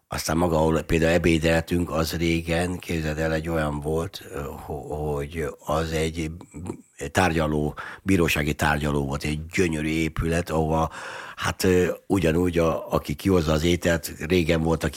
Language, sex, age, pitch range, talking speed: Hungarian, male, 60-79, 80-95 Hz, 130 wpm